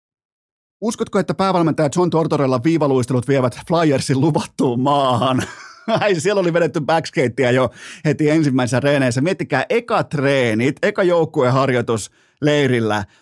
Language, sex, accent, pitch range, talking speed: Finnish, male, native, 125-155 Hz, 110 wpm